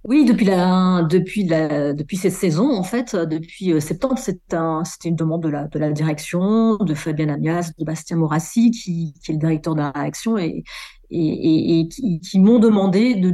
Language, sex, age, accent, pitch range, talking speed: French, female, 40-59, French, 165-215 Hz, 200 wpm